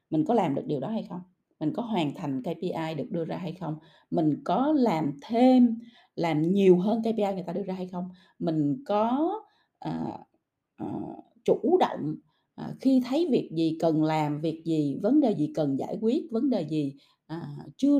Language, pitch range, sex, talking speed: Vietnamese, 160-225 Hz, female, 180 wpm